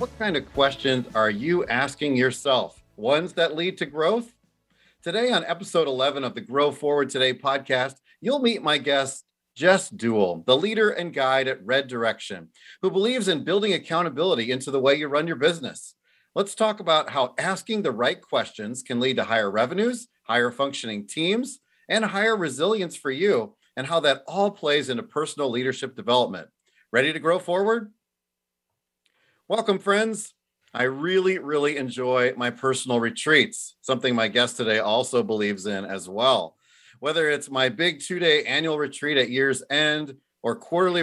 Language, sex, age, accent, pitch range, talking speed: English, male, 40-59, American, 125-175 Hz, 165 wpm